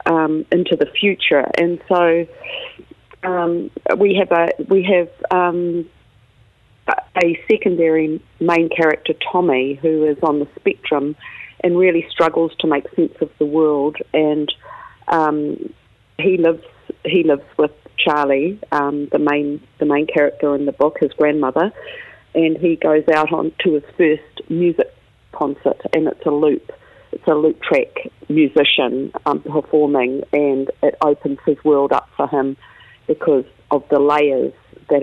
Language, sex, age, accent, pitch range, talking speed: English, female, 40-59, Australian, 145-170 Hz, 145 wpm